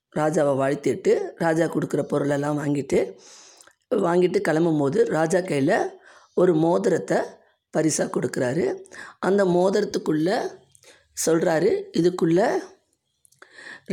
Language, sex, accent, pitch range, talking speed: Tamil, female, native, 150-205 Hz, 80 wpm